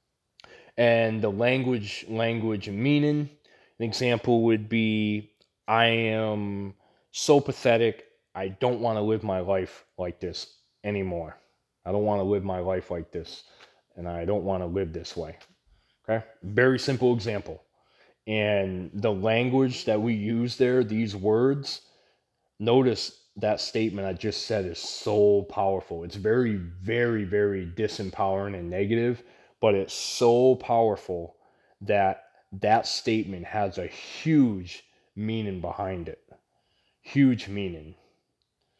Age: 20-39